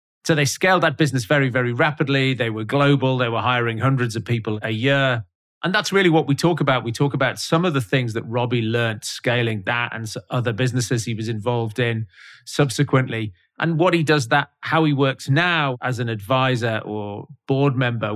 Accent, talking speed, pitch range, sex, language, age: British, 200 wpm, 110-135 Hz, male, English, 30-49